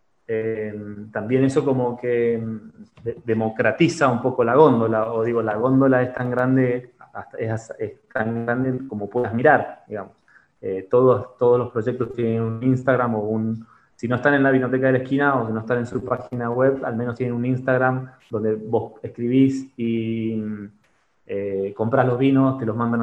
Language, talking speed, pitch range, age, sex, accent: Spanish, 175 wpm, 110-130 Hz, 20-39, male, Argentinian